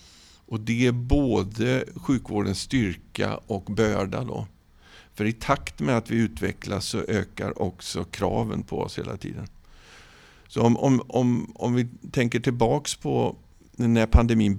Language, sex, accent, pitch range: Swedish, male, native, 95-120 Hz